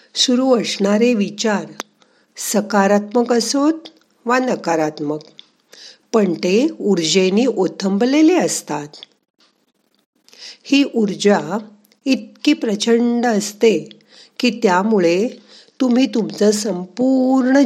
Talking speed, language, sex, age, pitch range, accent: 75 wpm, Marathi, female, 50-69, 180-240 Hz, native